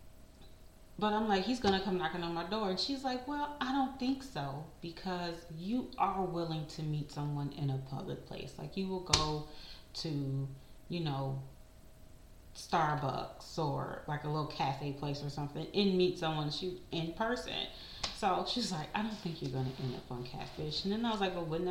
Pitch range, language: 145-200 Hz, English